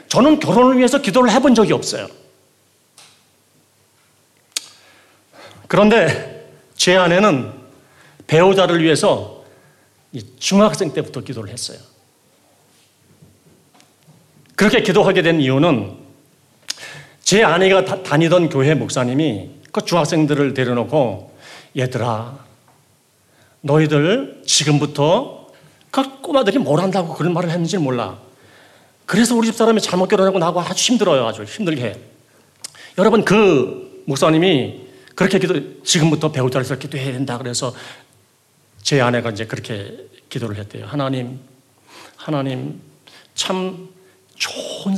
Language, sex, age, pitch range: Korean, male, 40-59, 135-190 Hz